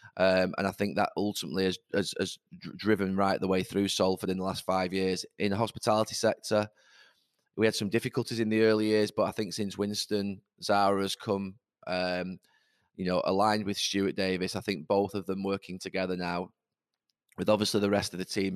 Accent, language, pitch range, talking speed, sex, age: British, English, 95-105 Hz, 200 wpm, male, 20-39